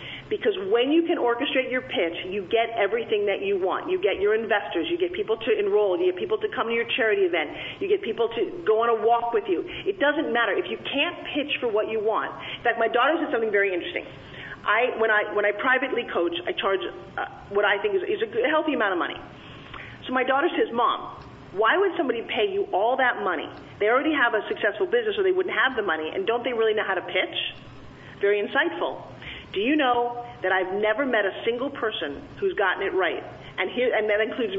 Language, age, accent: English, 40-59, American